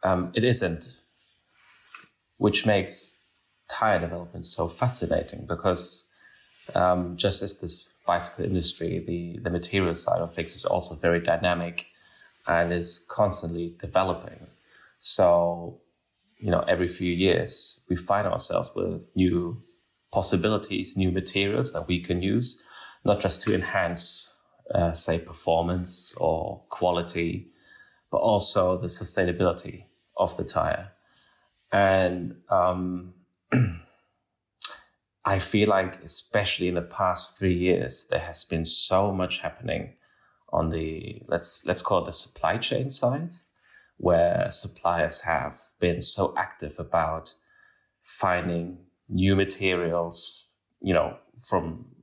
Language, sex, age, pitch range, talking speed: English, male, 20-39, 85-95 Hz, 120 wpm